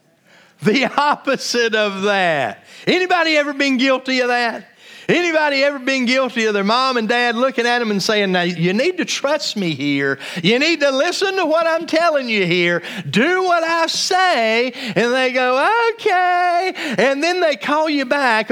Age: 40-59